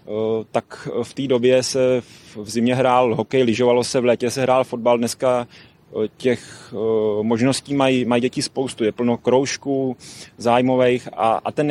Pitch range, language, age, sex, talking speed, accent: 115-130 Hz, Czech, 30-49, male, 155 wpm, native